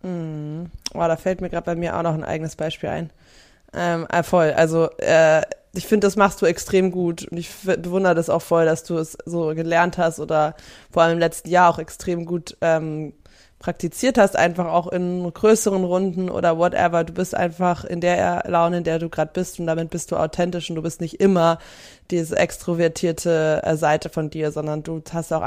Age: 20-39